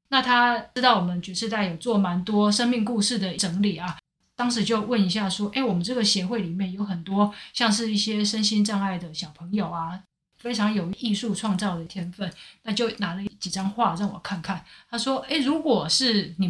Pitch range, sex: 185-230 Hz, female